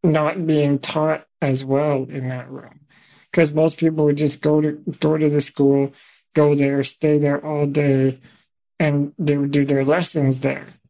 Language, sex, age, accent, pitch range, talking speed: English, male, 50-69, American, 140-160 Hz, 170 wpm